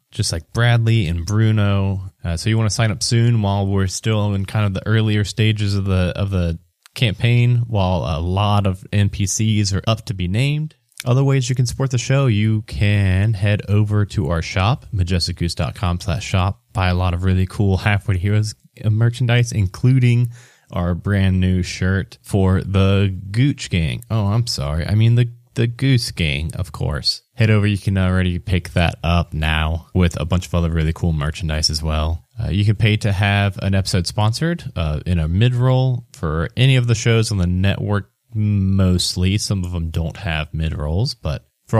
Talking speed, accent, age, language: 190 wpm, American, 20-39, English